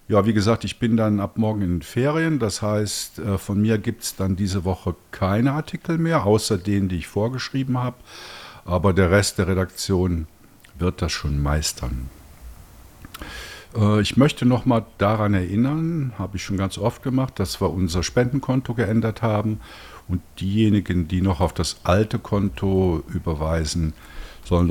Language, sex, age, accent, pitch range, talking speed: German, male, 50-69, German, 85-115 Hz, 155 wpm